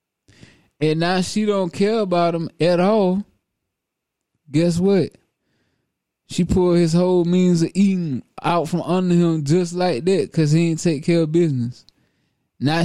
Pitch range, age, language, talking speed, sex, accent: 140-175 Hz, 20-39, English, 155 wpm, male, American